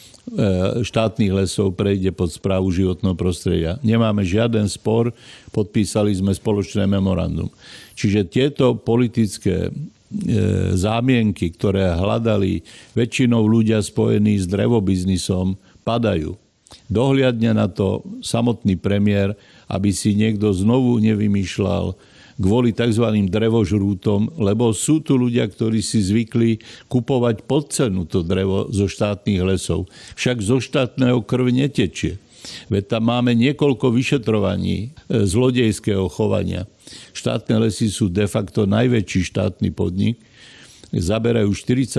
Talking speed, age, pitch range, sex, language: 105 wpm, 50-69, 100-115 Hz, male, Slovak